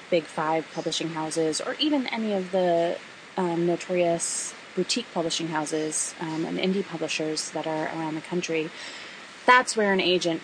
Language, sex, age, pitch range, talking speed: English, female, 20-39, 165-200 Hz, 155 wpm